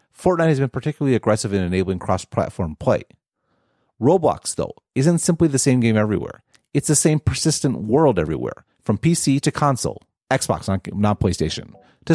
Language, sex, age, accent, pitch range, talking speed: English, male, 40-59, American, 115-160 Hz, 160 wpm